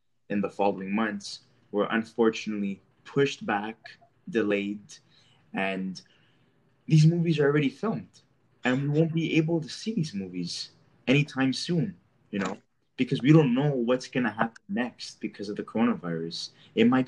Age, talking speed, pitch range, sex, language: 20-39, 150 wpm, 105-140 Hz, male, English